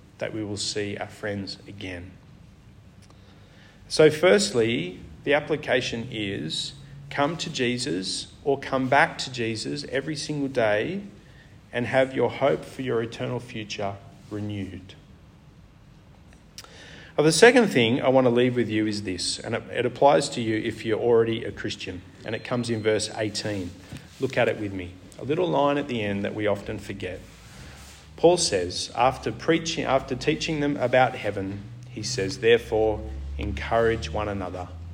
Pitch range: 95-140 Hz